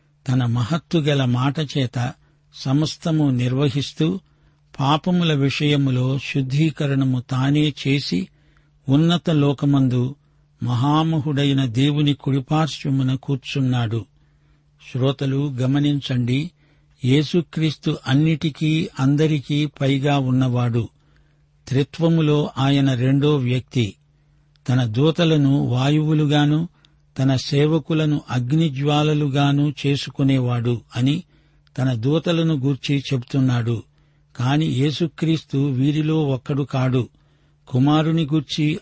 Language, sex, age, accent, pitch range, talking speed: Telugu, male, 60-79, native, 135-150 Hz, 65 wpm